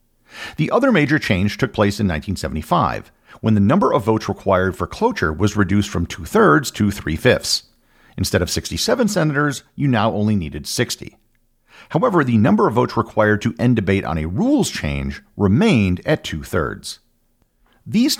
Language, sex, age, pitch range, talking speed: English, male, 50-69, 95-140 Hz, 160 wpm